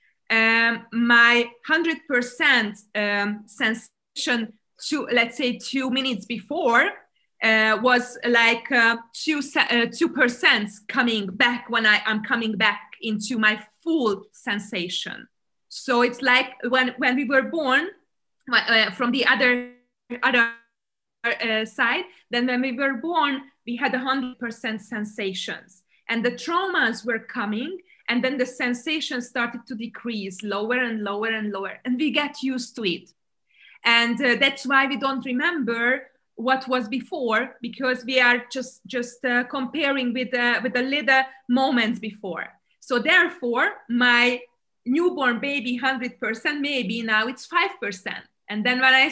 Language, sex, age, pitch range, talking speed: English, female, 20-39, 225-265 Hz, 140 wpm